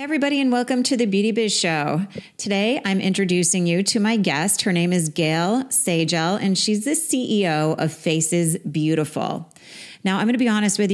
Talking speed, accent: 185 wpm, American